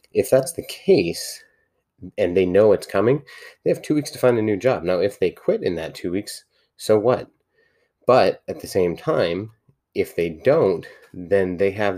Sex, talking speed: male, 195 wpm